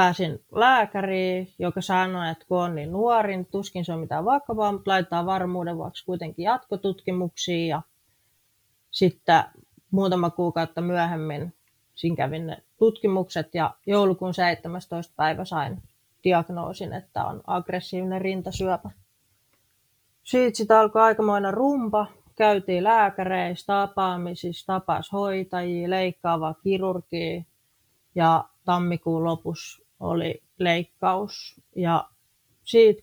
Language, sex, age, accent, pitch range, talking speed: Finnish, female, 30-49, native, 165-190 Hz, 105 wpm